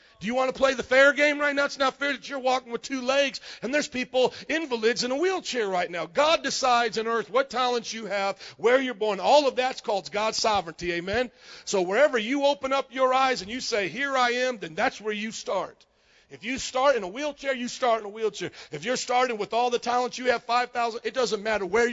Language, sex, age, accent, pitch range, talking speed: English, male, 50-69, American, 185-250 Hz, 245 wpm